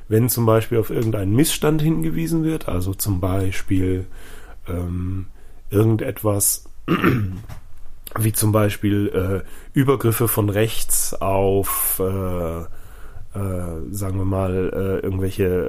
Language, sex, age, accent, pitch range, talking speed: German, male, 10-29, German, 95-110 Hz, 105 wpm